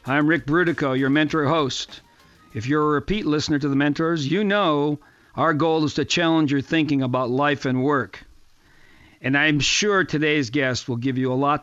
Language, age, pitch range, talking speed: English, 50-69, 135-160 Hz, 190 wpm